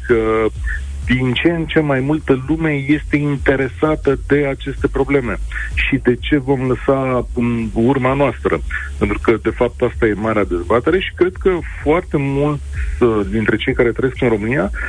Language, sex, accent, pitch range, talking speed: Romanian, male, native, 105-150 Hz, 160 wpm